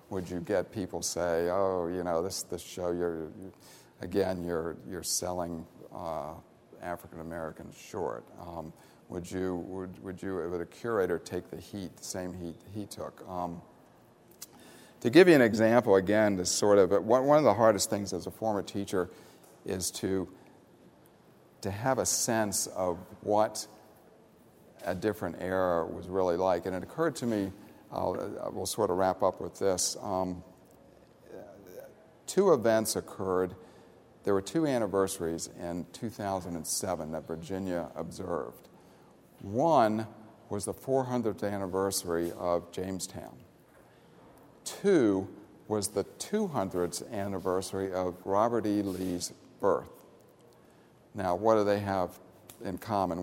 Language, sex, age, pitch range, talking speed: English, male, 50-69, 90-105 Hz, 135 wpm